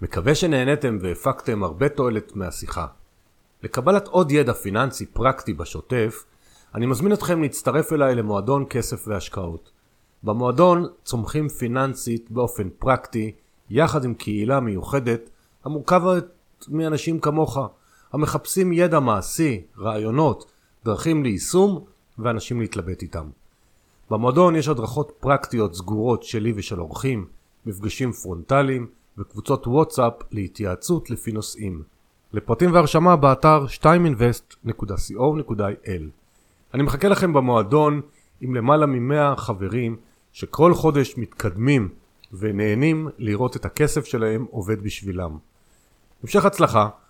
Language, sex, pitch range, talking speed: Hebrew, male, 105-150 Hz, 100 wpm